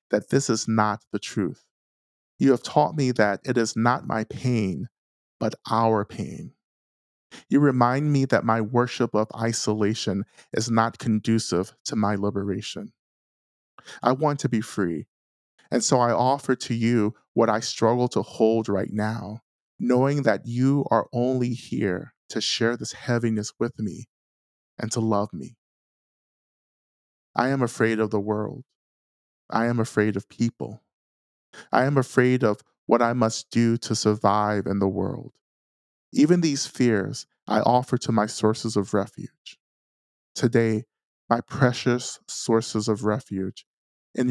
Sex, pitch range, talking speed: male, 105-125 Hz, 145 wpm